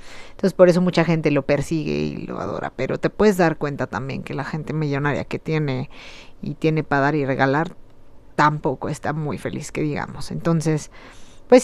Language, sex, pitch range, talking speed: Spanish, female, 155-210 Hz, 185 wpm